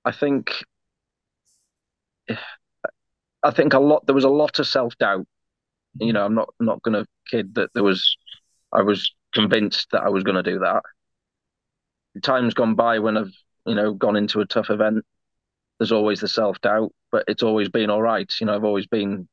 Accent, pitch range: British, 100-110 Hz